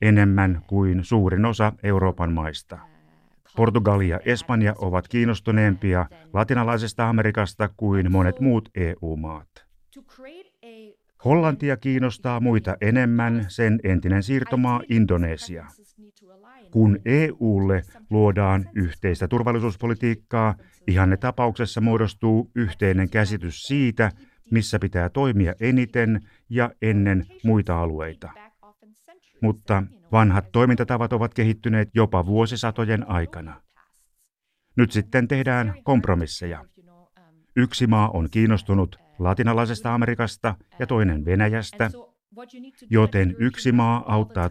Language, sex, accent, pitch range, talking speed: Finnish, male, native, 95-120 Hz, 95 wpm